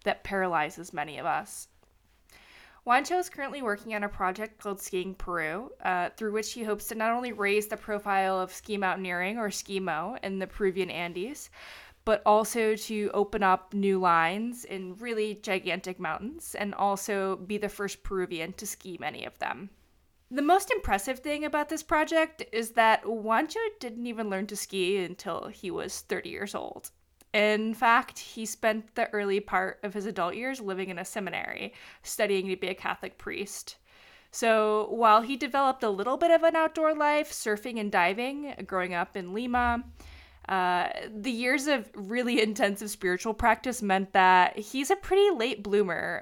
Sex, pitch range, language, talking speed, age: female, 190-240 Hz, English, 170 wpm, 20-39